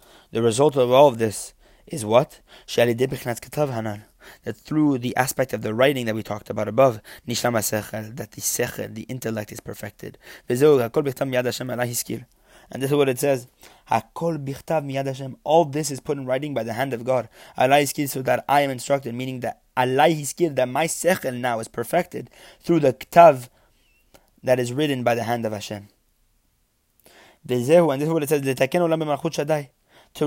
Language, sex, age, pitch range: English, male, 20-39, 120-150 Hz